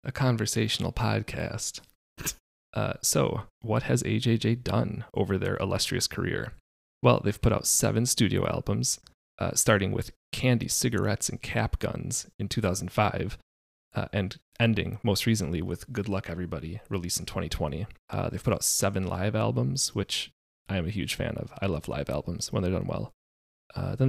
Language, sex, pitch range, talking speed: English, male, 85-120 Hz, 165 wpm